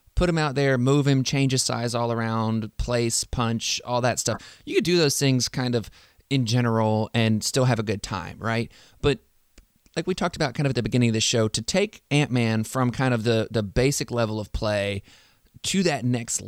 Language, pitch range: English, 115-135 Hz